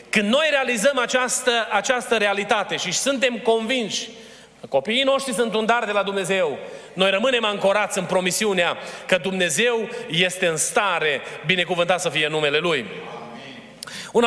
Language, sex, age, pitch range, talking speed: Romanian, male, 30-49, 195-245 Hz, 145 wpm